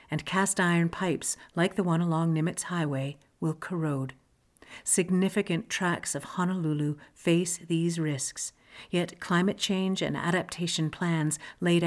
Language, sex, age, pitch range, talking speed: English, female, 50-69, 155-190 Hz, 125 wpm